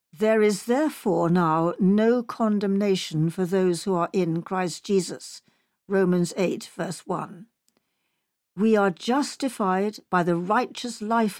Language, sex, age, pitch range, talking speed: English, female, 60-79, 180-235 Hz, 125 wpm